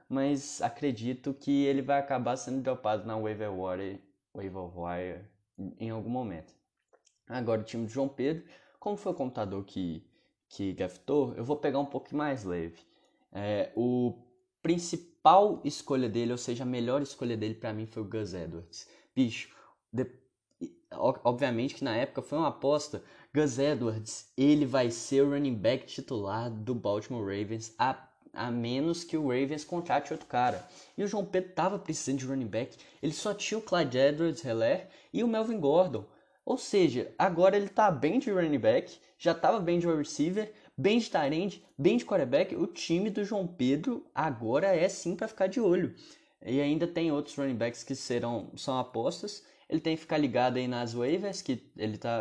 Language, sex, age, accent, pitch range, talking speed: Portuguese, male, 10-29, Brazilian, 115-170 Hz, 180 wpm